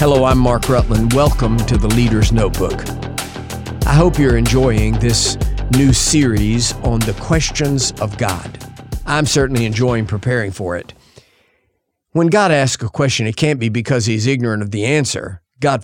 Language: English